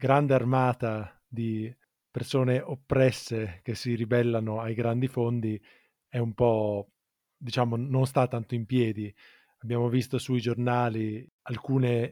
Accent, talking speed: native, 125 wpm